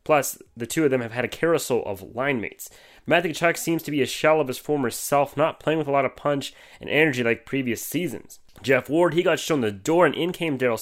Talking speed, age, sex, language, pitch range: 255 wpm, 20-39, male, English, 120-155 Hz